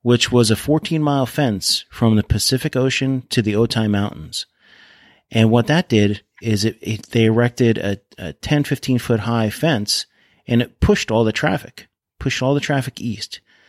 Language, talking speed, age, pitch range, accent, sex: English, 160 wpm, 30-49, 105-125 Hz, American, male